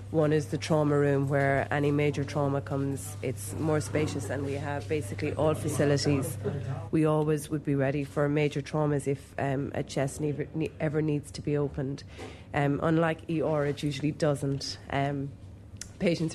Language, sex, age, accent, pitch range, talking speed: English, female, 30-49, Irish, 130-150 Hz, 160 wpm